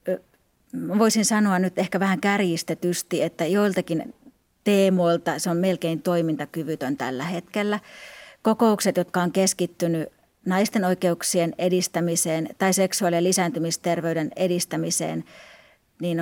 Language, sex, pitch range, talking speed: Finnish, female, 165-195 Hz, 100 wpm